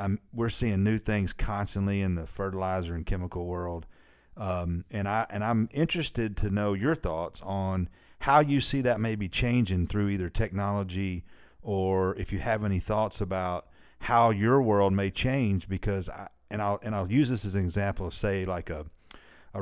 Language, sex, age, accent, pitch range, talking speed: English, male, 40-59, American, 90-110 Hz, 185 wpm